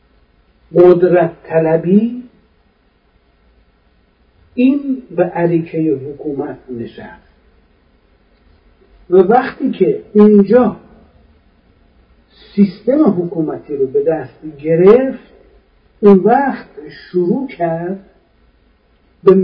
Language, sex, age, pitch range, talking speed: Persian, male, 50-69, 160-215 Hz, 70 wpm